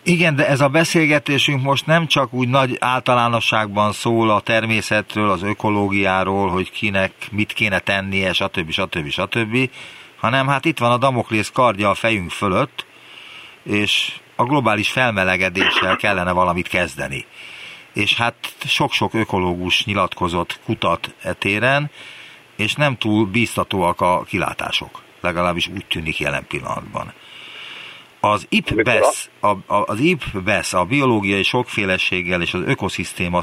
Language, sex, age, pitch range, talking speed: Hungarian, male, 50-69, 95-120 Hz, 125 wpm